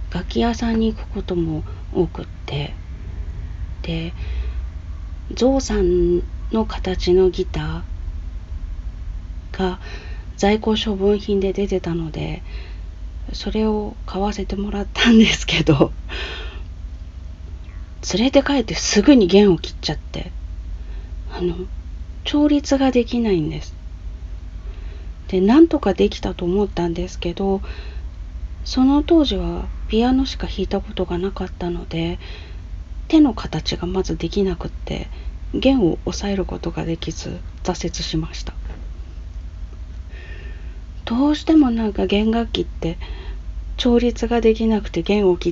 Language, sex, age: Japanese, female, 40-59